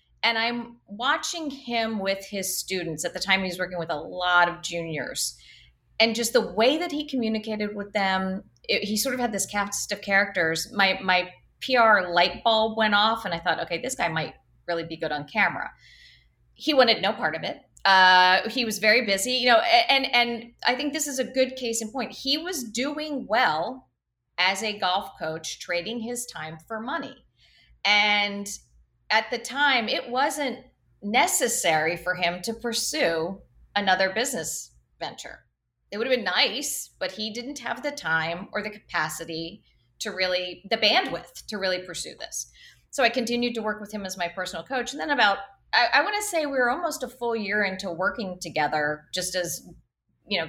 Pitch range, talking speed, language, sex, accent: 180-240 Hz, 190 wpm, English, female, American